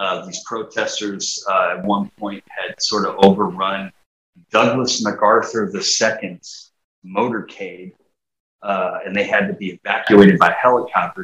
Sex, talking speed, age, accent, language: male, 135 wpm, 30-49, American, English